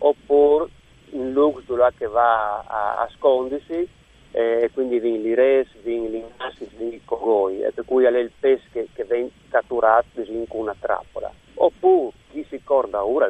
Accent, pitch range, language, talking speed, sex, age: native, 115-155 Hz, Italian, 160 wpm, male, 50-69